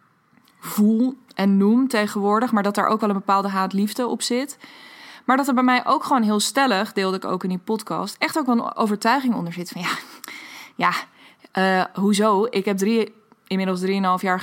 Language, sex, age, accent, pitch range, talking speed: Dutch, female, 20-39, Dutch, 190-230 Hz, 195 wpm